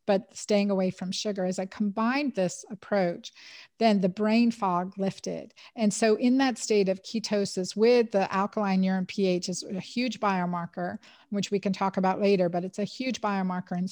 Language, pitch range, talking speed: English, 190-220 Hz, 185 wpm